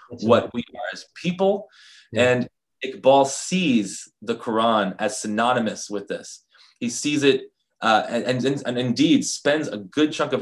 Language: English